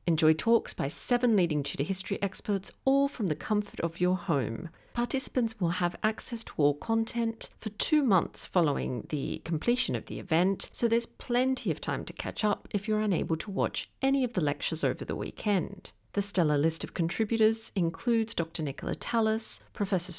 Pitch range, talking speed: 165-225 Hz, 180 wpm